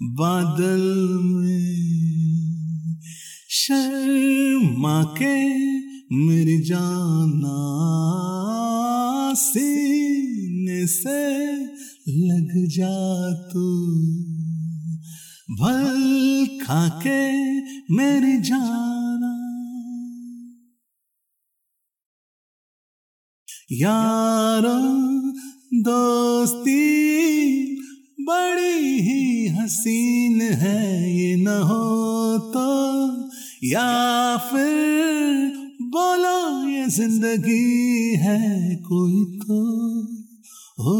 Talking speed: 50 wpm